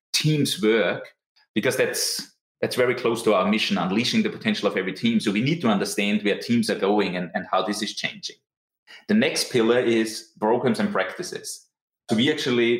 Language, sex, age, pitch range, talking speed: English, male, 30-49, 110-180 Hz, 190 wpm